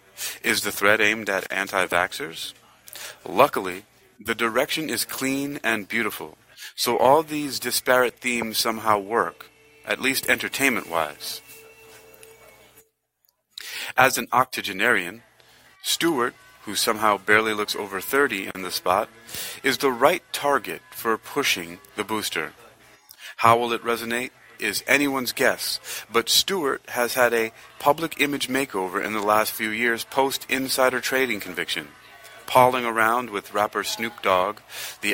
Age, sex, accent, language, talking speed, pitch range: 30-49, male, American, English, 130 wpm, 105-125 Hz